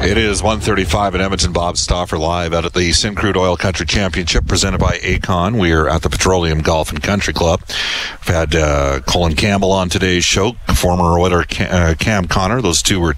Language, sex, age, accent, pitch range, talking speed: English, male, 40-59, American, 80-95 Hz, 200 wpm